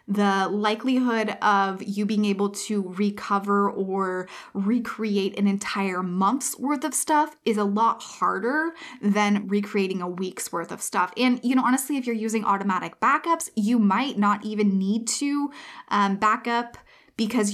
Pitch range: 195-245 Hz